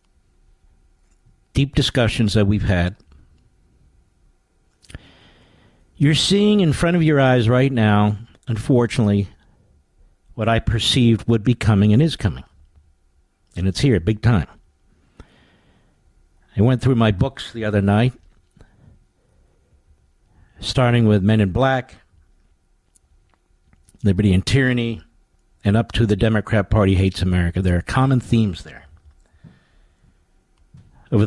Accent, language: American, English